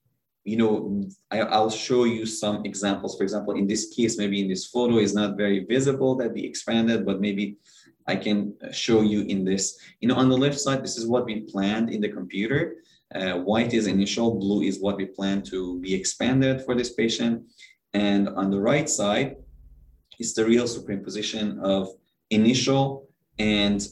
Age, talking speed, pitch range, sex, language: 20-39, 185 wpm, 100-115 Hz, male, English